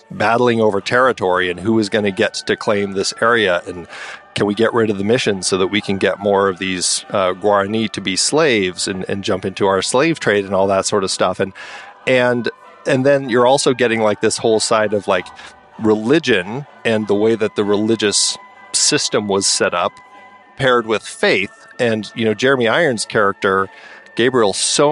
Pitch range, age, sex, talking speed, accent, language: 100-120 Hz, 40-59, male, 195 wpm, American, English